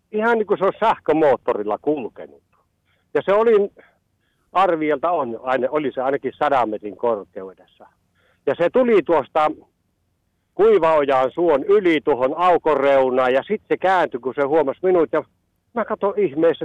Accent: native